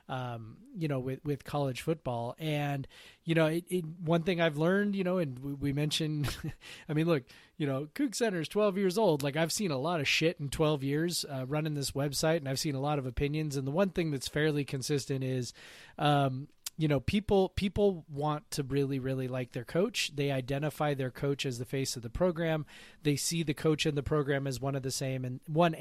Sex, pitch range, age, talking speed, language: male, 135-170 Hz, 30-49, 230 wpm, English